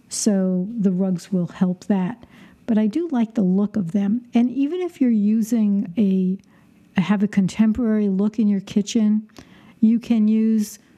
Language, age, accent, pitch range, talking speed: English, 60-79, American, 195-230 Hz, 165 wpm